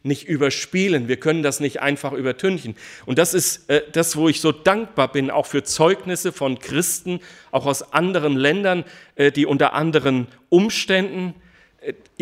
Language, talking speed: German, 160 wpm